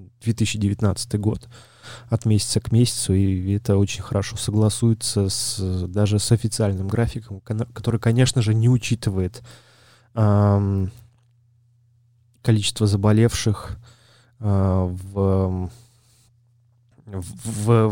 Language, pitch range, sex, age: Russian, 100-120 Hz, male, 20-39